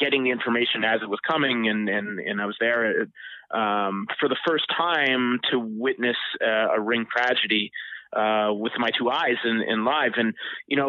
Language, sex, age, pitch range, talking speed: English, male, 30-49, 110-145 Hz, 200 wpm